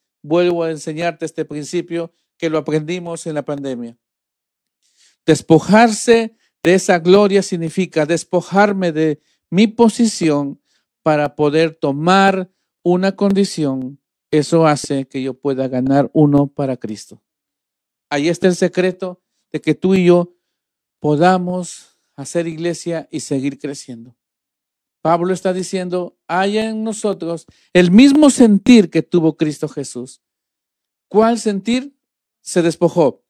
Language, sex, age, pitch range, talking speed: Spanish, male, 50-69, 160-220 Hz, 120 wpm